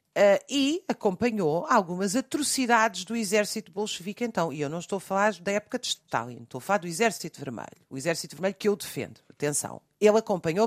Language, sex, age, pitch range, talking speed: Portuguese, female, 50-69, 160-235 Hz, 185 wpm